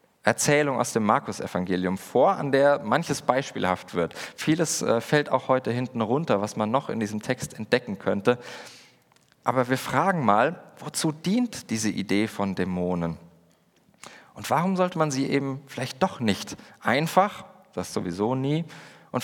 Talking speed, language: 150 wpm, German